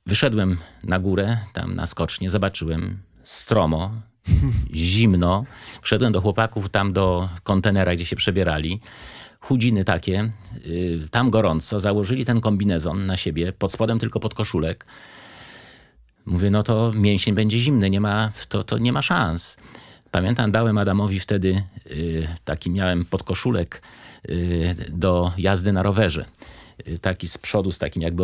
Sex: male